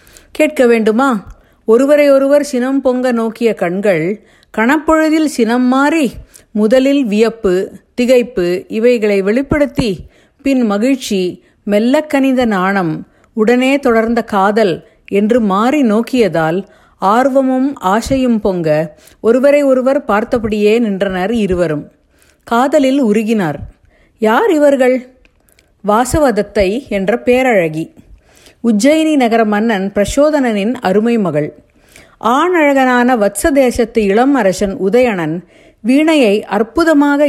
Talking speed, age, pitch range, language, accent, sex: 85 wpm, 50-69, 205-270 Hz, Tamil, native, female